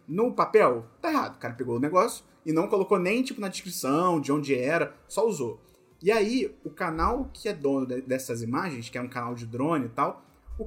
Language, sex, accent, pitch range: Portuguese, male, Brazilian, 140-185 Hz